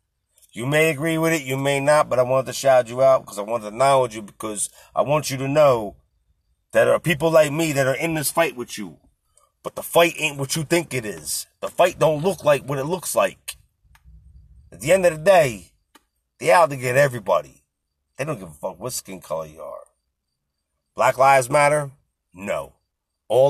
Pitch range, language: 110-170 Hz, English